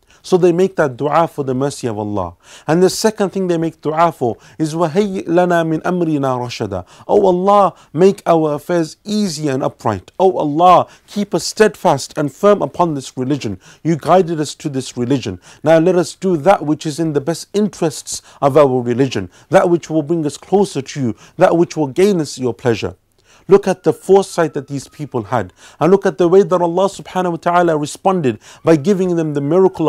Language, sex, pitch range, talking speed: English, male, 135-180 Hz, 205 wpm